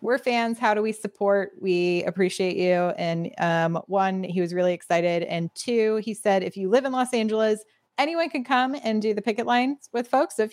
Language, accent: English, American